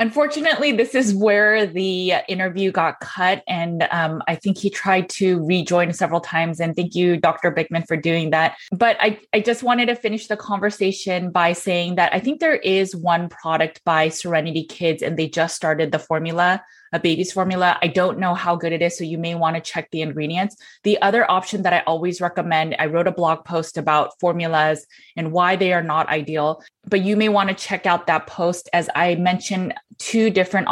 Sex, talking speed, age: female, 205 wpm, 20-39